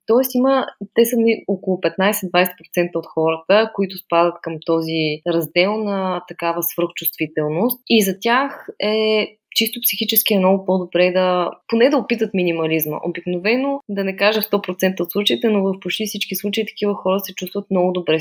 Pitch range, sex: 175-215 Hz, female